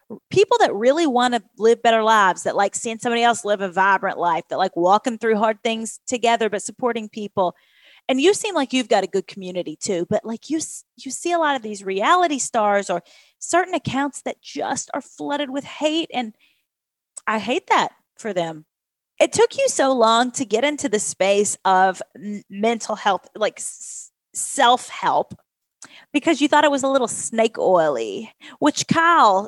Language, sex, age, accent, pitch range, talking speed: English, female, 30-49, American, 205-280 Hz, 180 wpm